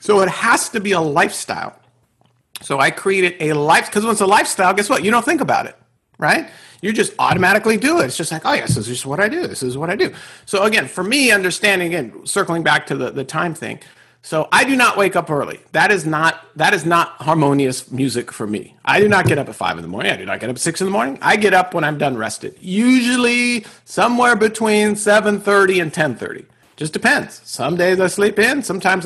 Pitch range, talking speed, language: 150-210 Hz, 240 wpm, English